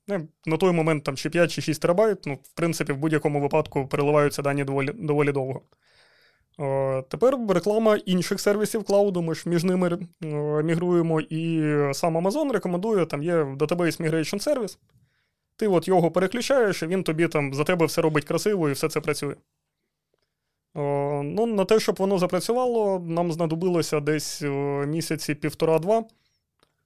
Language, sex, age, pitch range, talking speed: Ukrainian, male, 20-39, 150-180 Hz, 150 wpm